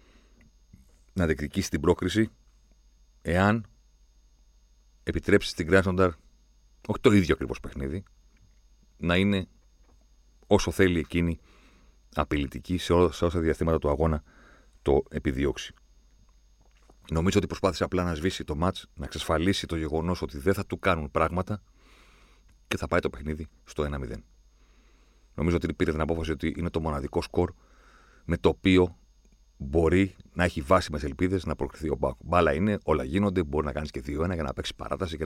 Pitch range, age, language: 65-95 Hz, 40-59, Greek